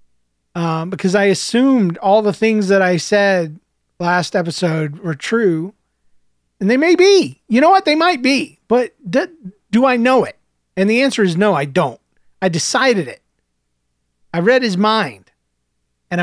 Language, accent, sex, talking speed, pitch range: English, American, male, 165 wpm, 145-220 Hz